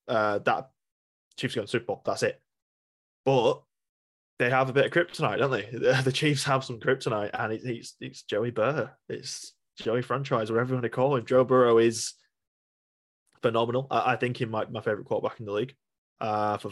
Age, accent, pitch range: 10-29, British, 105-130 Hz